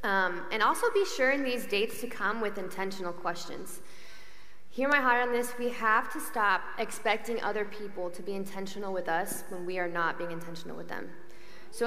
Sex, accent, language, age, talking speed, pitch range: female, American, English, 20-39, 195 wpm, 180-230 Hz